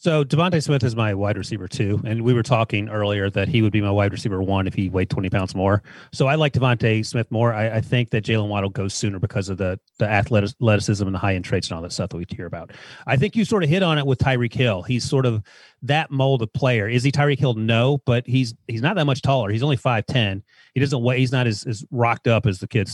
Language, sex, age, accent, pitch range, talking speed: English, male, 30-49, American, 105-135 Hz, 270 wpm